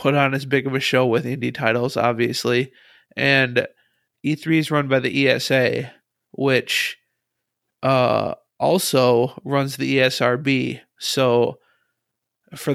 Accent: American